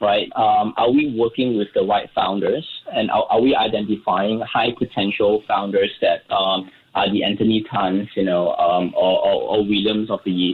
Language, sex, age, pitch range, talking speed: English, male, 20-39, 100-125 Hz, 175 wpm